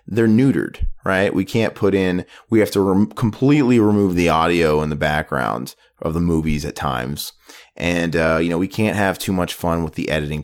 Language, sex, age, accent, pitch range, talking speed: English, male, 30-49, American, 80-100 Hz, 205 wpm